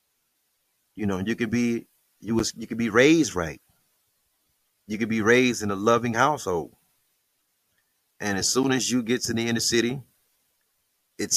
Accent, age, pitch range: American, 30-49, 105-120 Hz